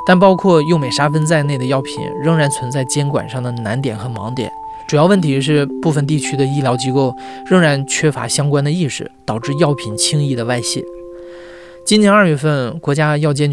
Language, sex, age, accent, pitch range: Chinese, male, 20-39, native, 130-165 Hz